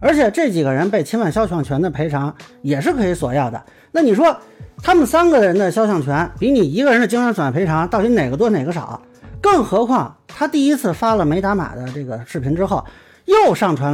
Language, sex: Chinese, male